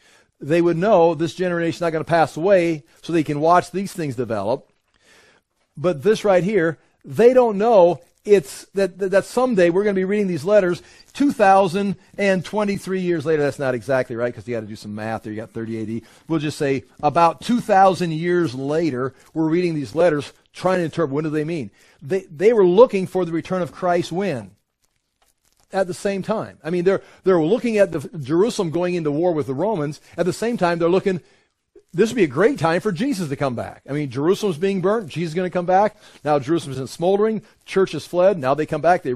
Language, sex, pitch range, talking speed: English, male, 150-195 Hz, 220 wpm